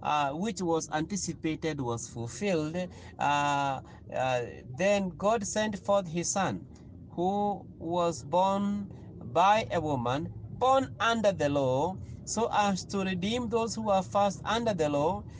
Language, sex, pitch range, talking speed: English, male, 125-185 Hz, 135 wpm